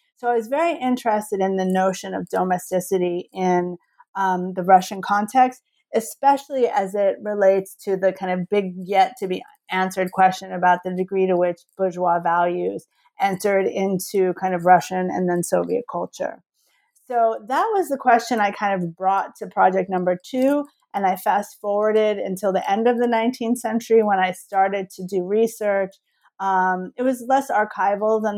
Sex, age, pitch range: female, 30-49, 185-220 Hz